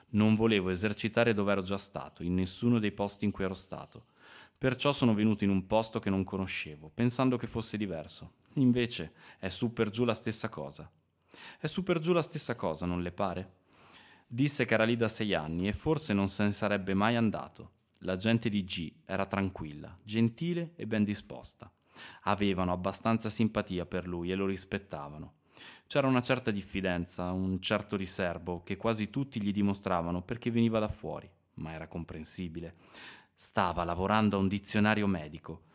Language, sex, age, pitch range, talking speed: Italian, male, 20-39, 90-115 Hz, 175 wpm